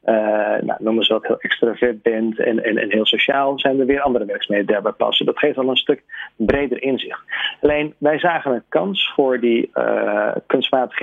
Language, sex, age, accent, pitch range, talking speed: Dutch, male, 40-59, Dutch, 115-140 Hz, 195 wpm